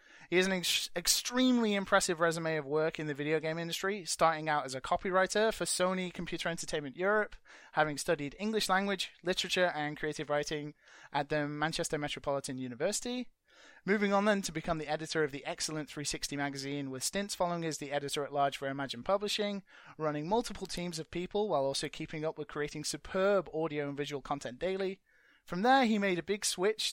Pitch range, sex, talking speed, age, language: 150-195 Hz, male, 185 wpm, 20-39, English